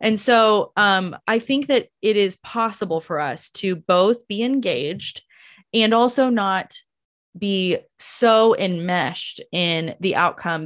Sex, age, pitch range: female, 20-39, 165-205 Hz